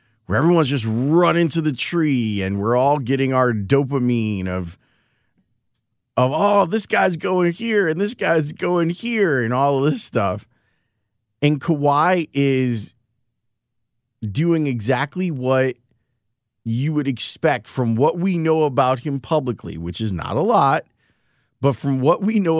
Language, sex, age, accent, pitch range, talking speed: English, male, 30-49, American, 110-140 Hz, 150 wpm